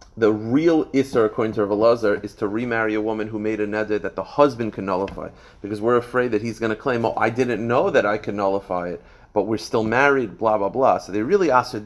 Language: English